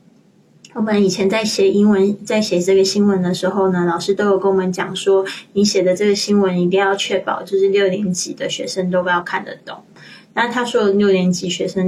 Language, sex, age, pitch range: Chinese, female, 20-39, 180-195 Hz